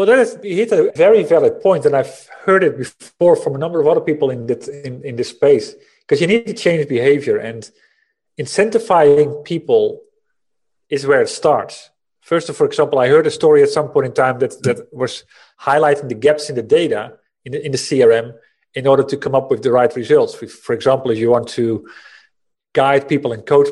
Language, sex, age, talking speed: English, male, 40-59, 215 wpm